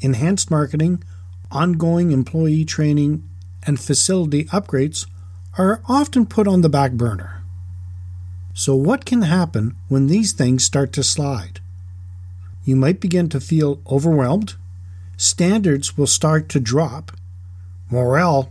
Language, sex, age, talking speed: English, male, 50-69, 120 wpm